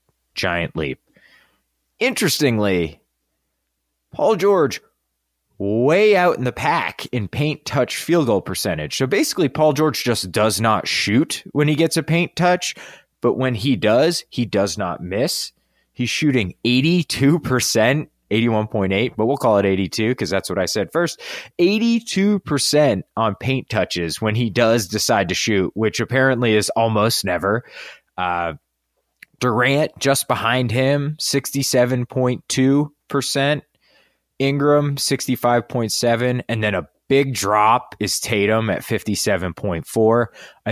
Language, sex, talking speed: English, male, 130 wpm